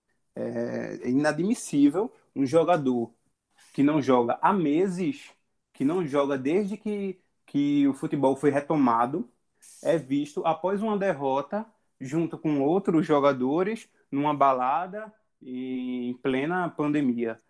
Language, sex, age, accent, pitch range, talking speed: Portuguese, male, 20-39, Brazilian, 135-195 Hz, 115 wpm